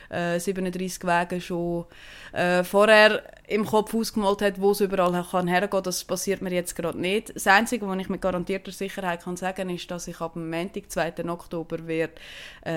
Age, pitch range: 20-39, 165-200 Hz